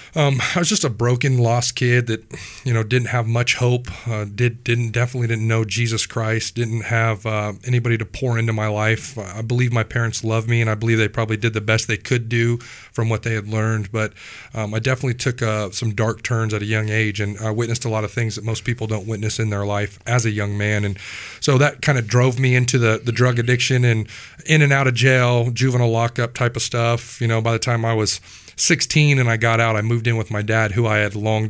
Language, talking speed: English, 250 wpm